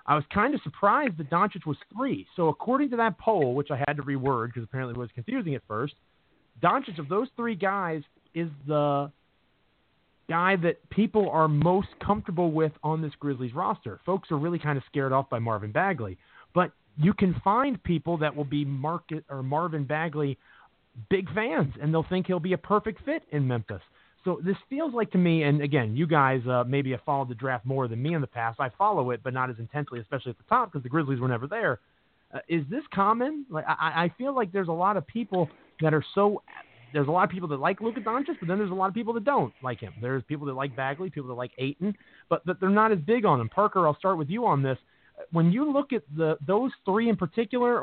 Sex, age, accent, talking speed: male, 30-49, American, 235 wpm